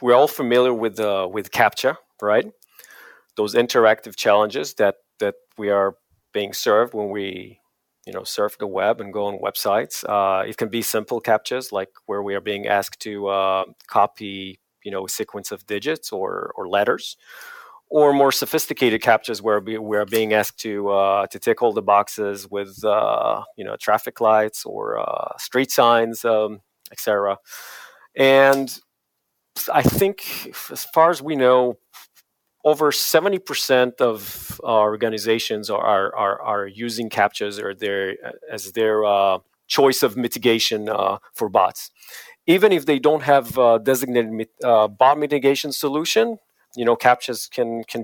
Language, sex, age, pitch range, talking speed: English, male, 30-49, 100-135 Hz, 160 wpm